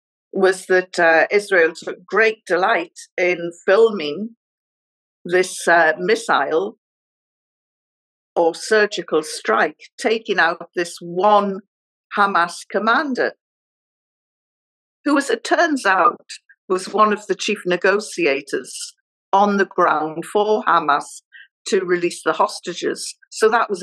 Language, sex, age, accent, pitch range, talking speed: English, female, 60-79, British, 180-255 Hz, 110 wpm